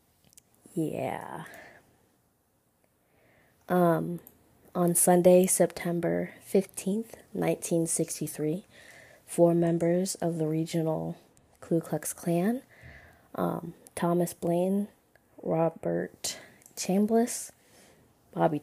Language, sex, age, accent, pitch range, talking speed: English, female, 20-39, American, 160-180 Hz, 70 wpm